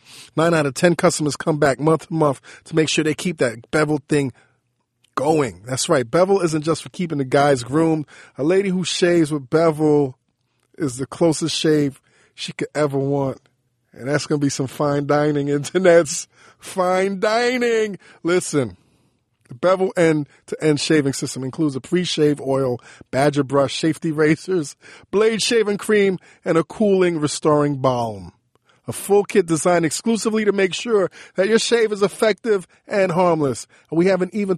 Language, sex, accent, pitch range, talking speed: English, male, American, 140-185 Hz, 165 wpm